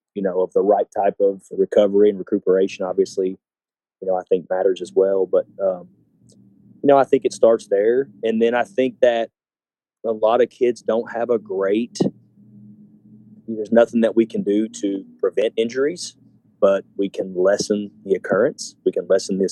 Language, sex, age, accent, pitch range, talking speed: English, male, 30-49, American, 95-120 Hz, 180 wpm